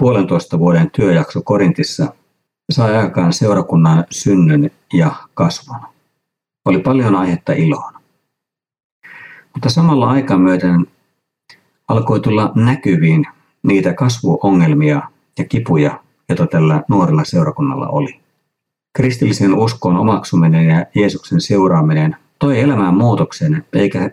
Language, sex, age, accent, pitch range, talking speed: Finnish, male, 50-69, native, 90-145 Hz, 100 wpm